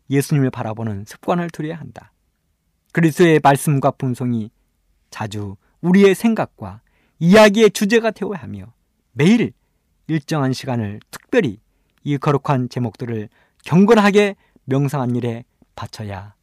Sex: male